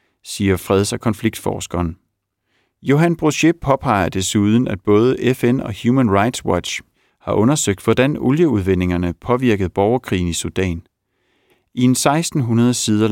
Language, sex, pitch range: Danish, male, 95-125 Hz